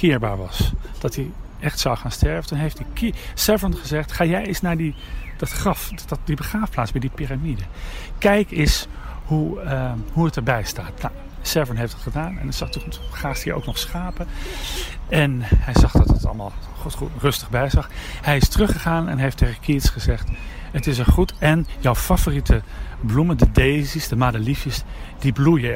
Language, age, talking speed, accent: Dutch, 40-59, 180 wpm, Dutch